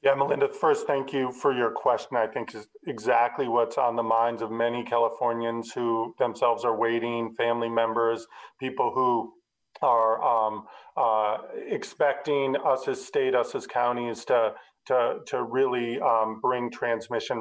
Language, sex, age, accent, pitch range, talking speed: English, male, 40-59, American, 115-135 Hz, 150 wpm